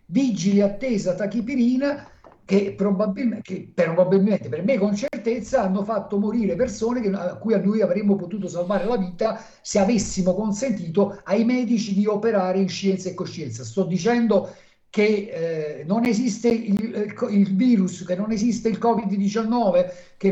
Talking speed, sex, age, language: 150 wpm, male, 50-69, Italian